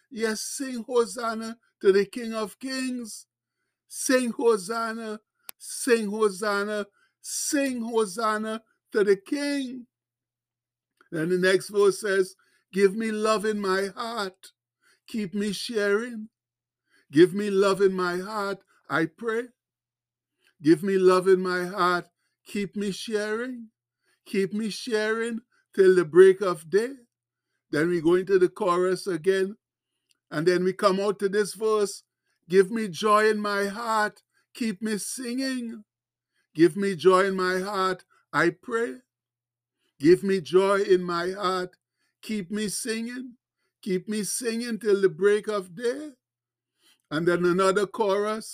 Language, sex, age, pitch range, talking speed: English, male, 60-79, 180-225 Hz, 135 wpm